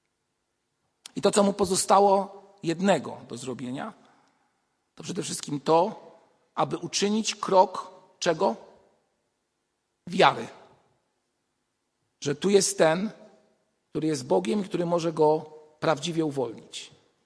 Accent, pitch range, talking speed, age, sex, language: native, 145-185 Hz, 100 wpm, 50-69, male, Polish